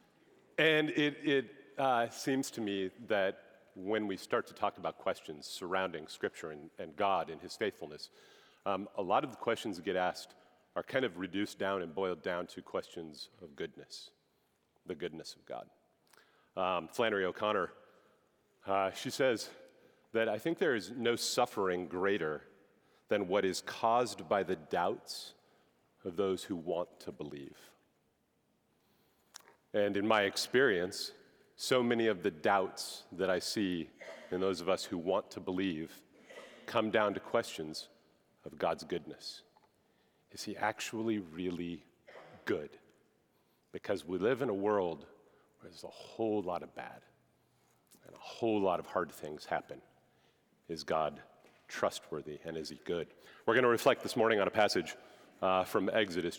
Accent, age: American, 40-59